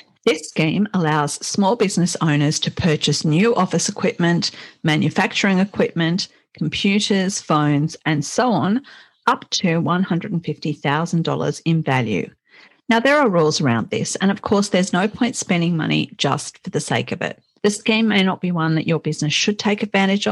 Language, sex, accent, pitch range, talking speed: English, female, Australian, 160-205 Hz, 160 wpm